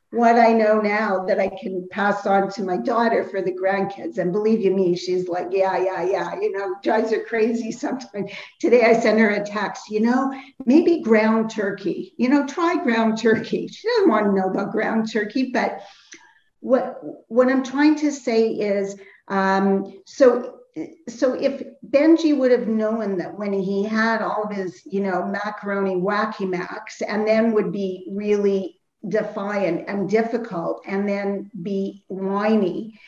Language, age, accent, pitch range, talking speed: English, 50-69, American, 195-245 Hz, 170 wpm